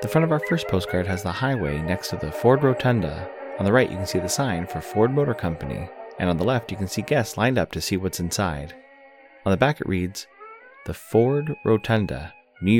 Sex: male